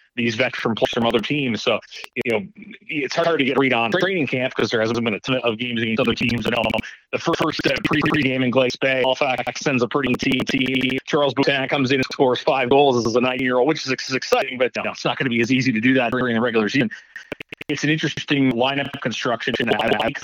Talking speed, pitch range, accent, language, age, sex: 250 wpm, 120-140 Hz, American, English, 30-49, male